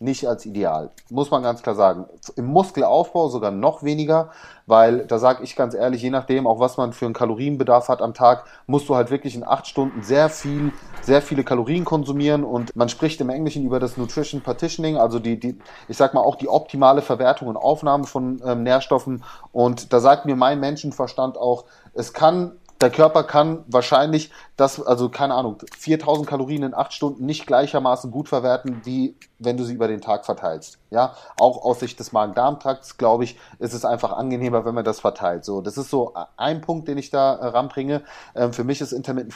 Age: 30-49